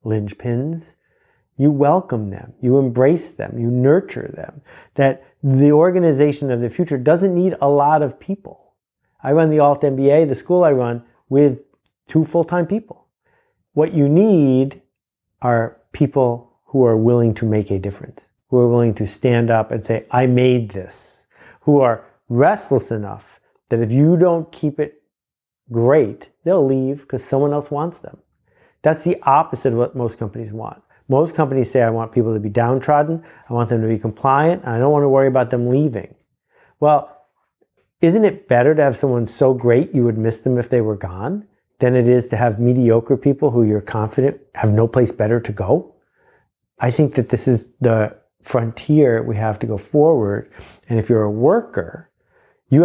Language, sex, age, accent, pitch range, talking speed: English, male, 40-59, American, 115-145 Hz, 180 wpm